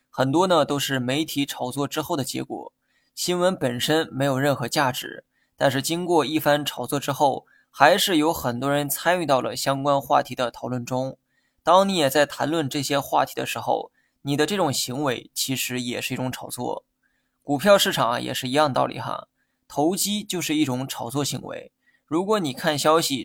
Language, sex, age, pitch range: Chinese, male, 20-39, 135-160 Hz